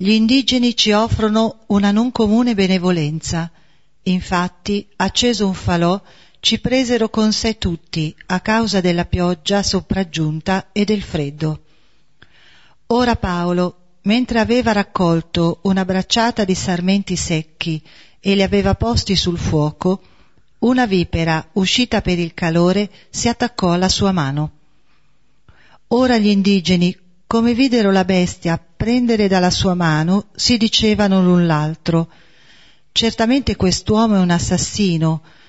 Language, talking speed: Italian, 120 wpm